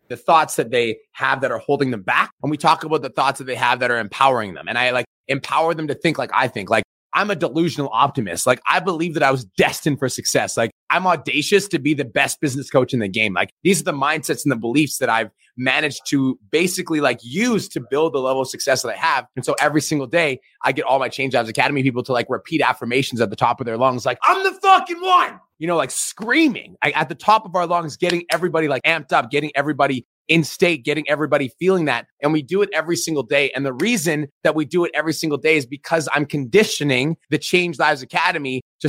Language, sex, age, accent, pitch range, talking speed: English, male, 30-49, American, 130-165 Hz, 245 wpm